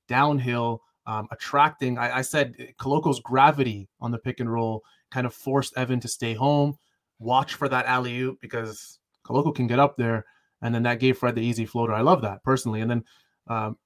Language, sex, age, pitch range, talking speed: English, male, 20-39, 115-145 Hz, 195 wpm